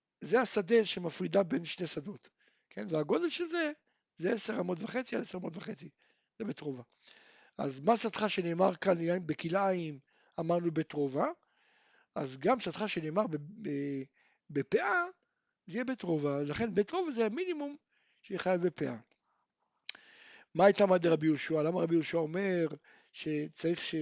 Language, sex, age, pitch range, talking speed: Hebrew, male, 60-79, 165-240 Hz, 75 wpm